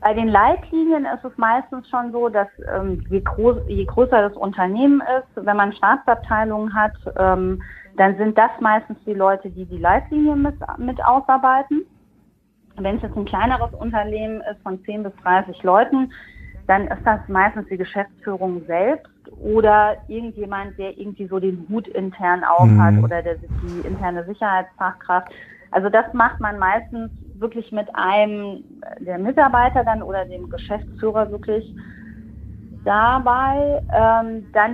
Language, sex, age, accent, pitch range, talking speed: German, female, 30-49, German, 195-245 Hz, 145 wpm